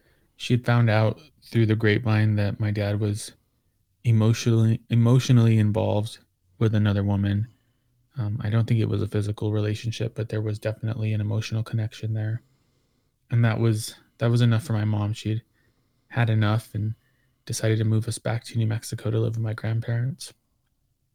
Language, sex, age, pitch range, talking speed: English, male, 20-39, 110-120 Hz, 170 wpm